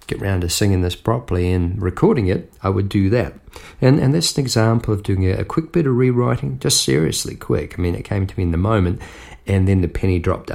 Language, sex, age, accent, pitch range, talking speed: English, male, 40-59, Australian, 95-120 Hz, 245 wpm